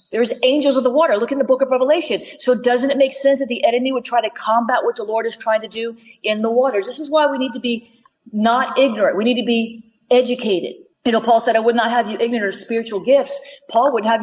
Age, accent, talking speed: 40-59, American, 265 wpm